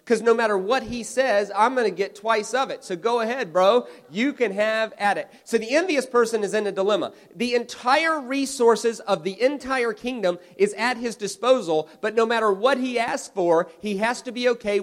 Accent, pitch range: American, 170-225 Hz